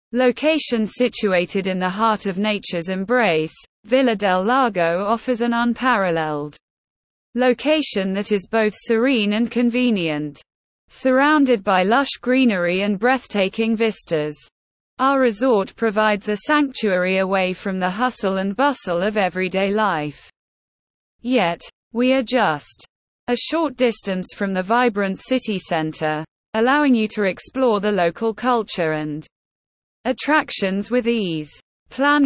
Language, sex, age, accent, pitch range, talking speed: English, female, 20-39, British, 185-250 Hz, 125 wpm